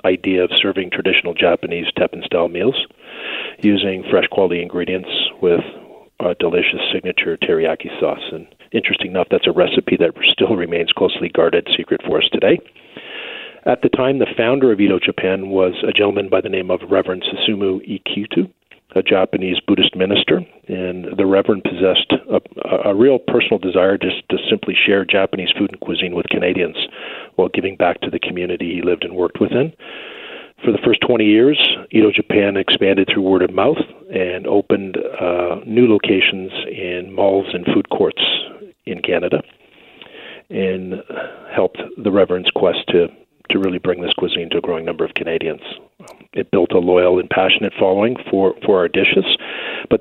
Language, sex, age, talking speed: English, male, 40-59, 165 wpm